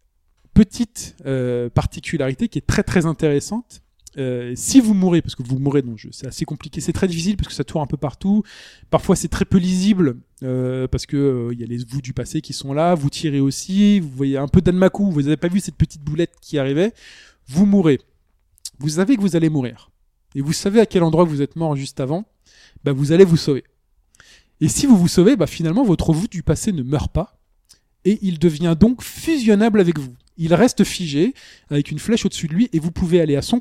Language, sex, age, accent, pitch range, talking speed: French, male, 20-39, French, 145-190 Hz, 225 wpm